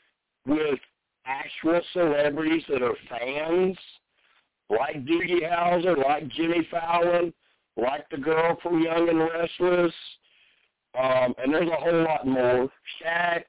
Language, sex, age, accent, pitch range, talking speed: English, male, 60-79, American, 140-175 Hz, 120 wpm